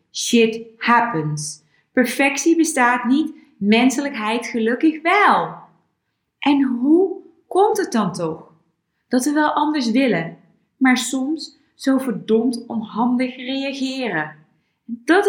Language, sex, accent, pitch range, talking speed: Dutch, female, Dutch, 215-290 Hz, 100 wpm